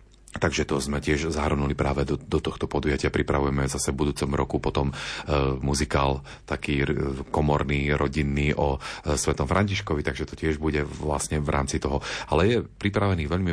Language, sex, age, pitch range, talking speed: Slovak, male, 40-59, 75-80 Hz, 170 wpm